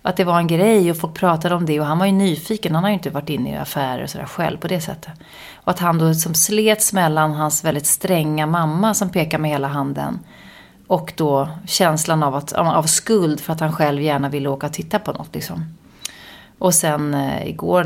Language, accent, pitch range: English, Swedish, 155-195 Hz